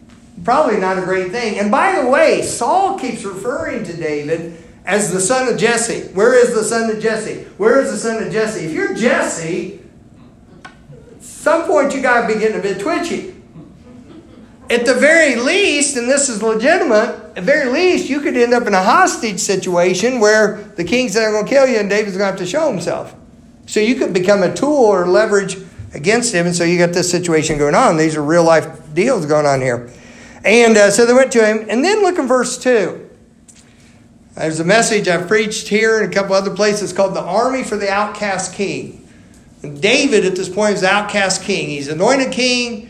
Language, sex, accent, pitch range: English, male, American, 185-250 Hz